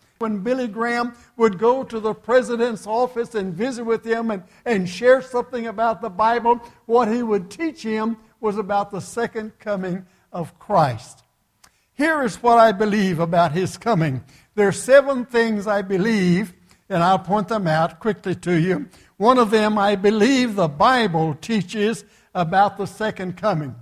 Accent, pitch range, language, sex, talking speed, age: American, 185-235 Hz, English, male, 165 wpm, 60-79